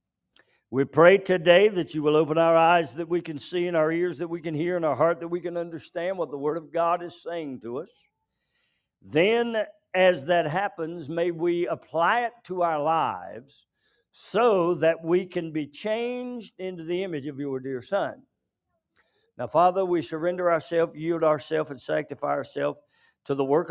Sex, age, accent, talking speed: male, 50-69, American, 185 wpm